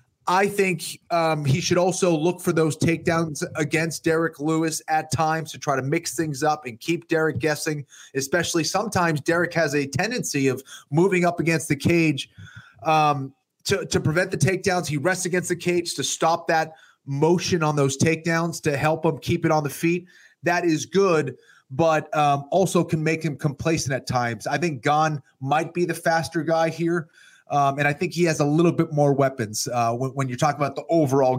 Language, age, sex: English, 30-49, male